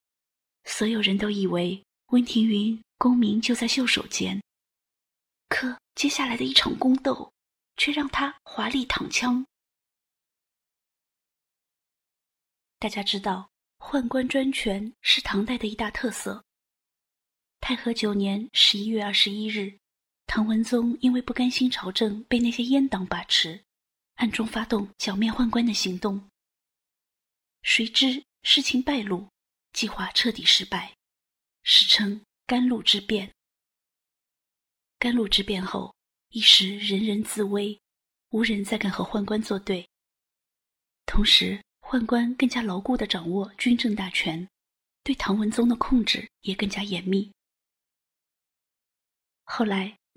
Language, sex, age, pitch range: Chinese, female, 20-39, 200-250 Hz